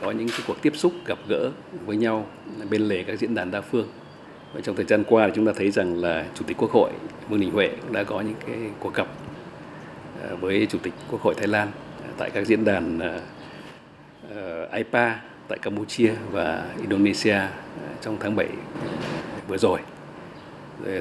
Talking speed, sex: 180 wpm, male